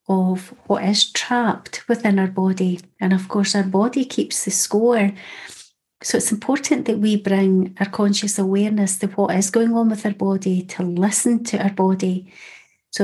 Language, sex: English, female